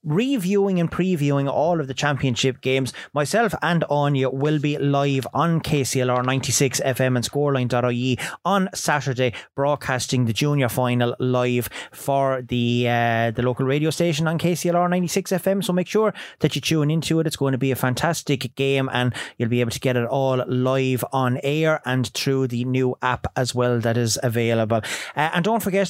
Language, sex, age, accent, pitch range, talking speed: English, male, 30-49, Irish, 125-155 Hz, 180 wpm